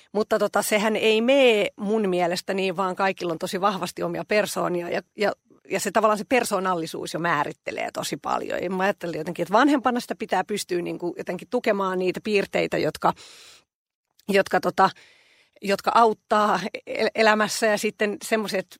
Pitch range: 180-215 Hz